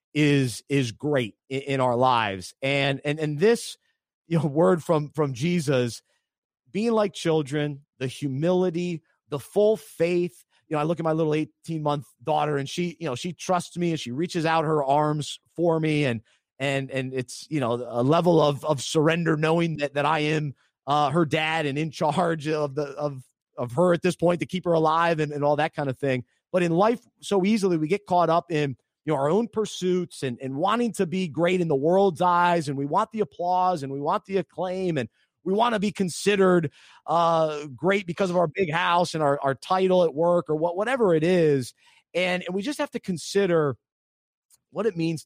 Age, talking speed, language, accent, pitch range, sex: 30-49, 210 wpm, English, American, 140-180 Hz, male